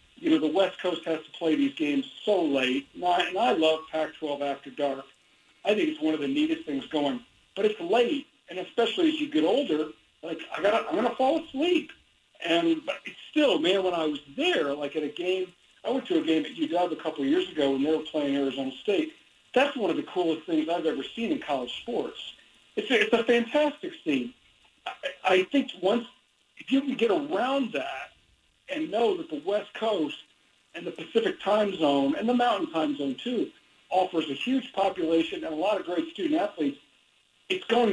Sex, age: male, 50-69